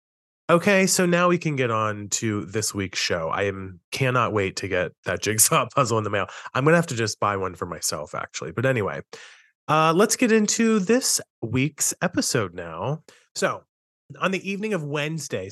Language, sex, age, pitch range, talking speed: English, male, 30-49, 115-170 Hz, 190 wpm